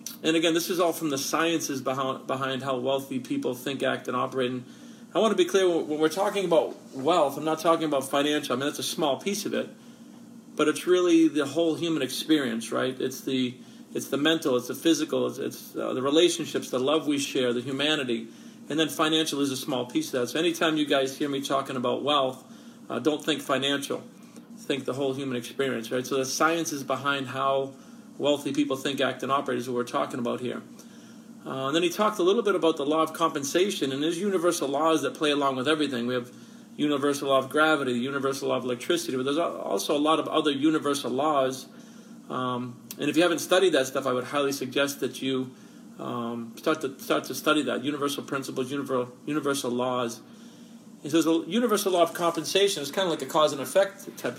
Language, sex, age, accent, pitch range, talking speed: English, male, 40-59, American, 135-180 Hz, 215 wpm